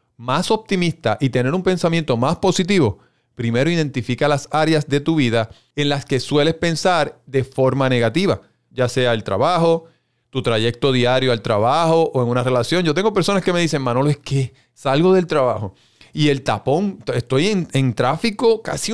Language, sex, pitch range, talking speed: Spanish, male, 120-165 Hz, 175 wpm